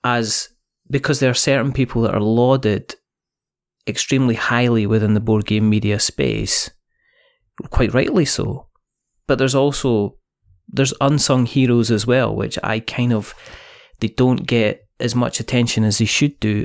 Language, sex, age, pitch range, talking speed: English, male, 30-49, 110-125 Hz, 150 wpm